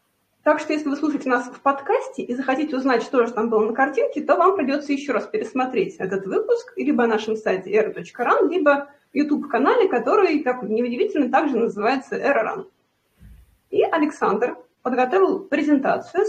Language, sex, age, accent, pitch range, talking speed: Russian, female, 30-49, native, 215-335 Hz, 155 wpm